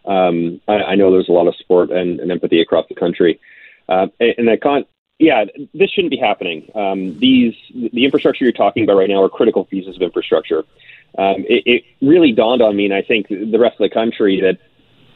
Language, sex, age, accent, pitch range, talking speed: English, male, 30-49, American, 100-135 Hz, 220 wpm